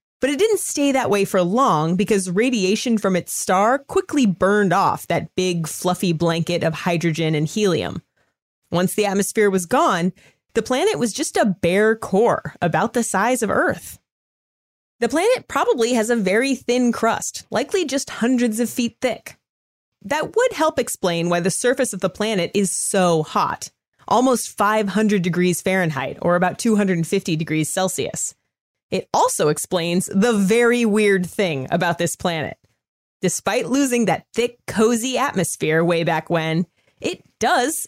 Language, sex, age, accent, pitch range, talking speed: English, female, 30-49, American, 180-250 Hz, 155 wpm